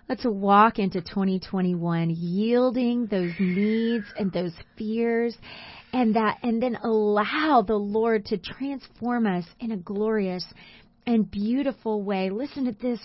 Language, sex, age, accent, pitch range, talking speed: English, female, 30-49, American, 175-225 Hz, 135 wpm